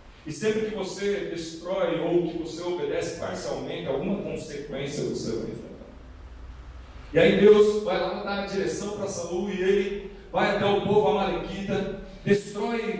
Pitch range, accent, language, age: 190-230 Hz, Brazilian, Portuguese, 40-59